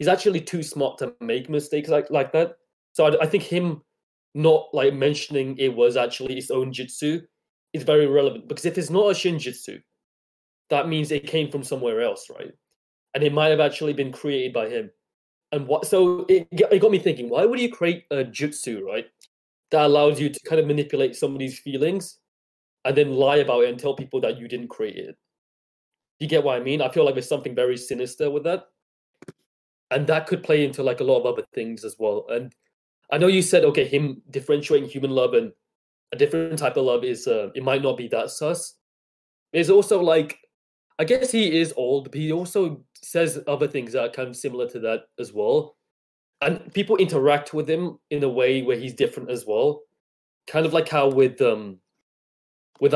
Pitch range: 140-230 Hz